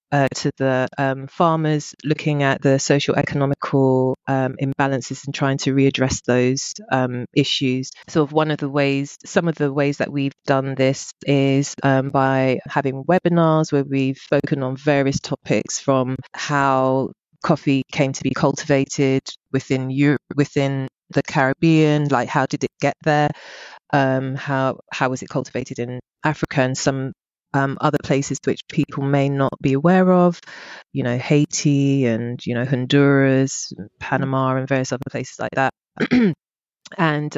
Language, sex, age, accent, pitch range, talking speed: English, female, 30-49, British, 130-145 Hz, 155 wpm